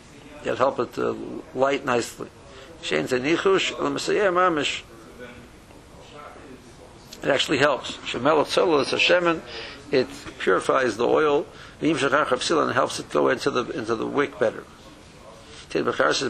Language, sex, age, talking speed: English, male, 60-79, 90 wpm